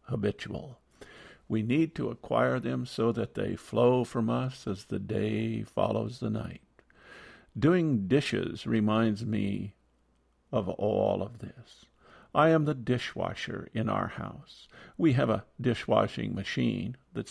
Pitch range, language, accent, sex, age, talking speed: 105-125 Hz, English, American, male, 50-69, 135 wpm